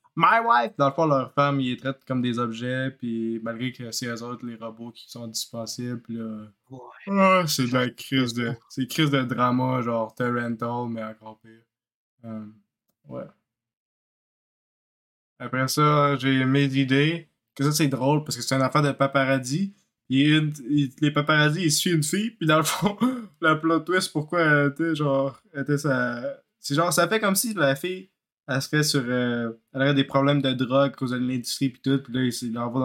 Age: 20-39